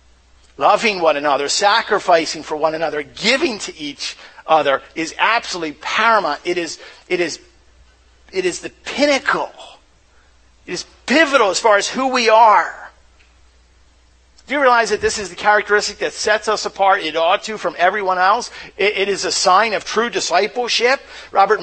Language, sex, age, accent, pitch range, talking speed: English, male, 50-69, American, 160-235 Hz, 160 wpm